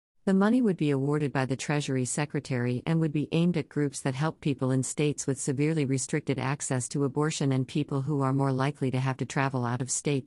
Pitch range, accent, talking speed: 130-160 Hz, American, 230 wpm